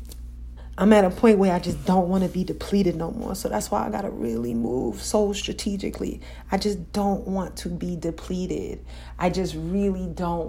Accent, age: American, 30-49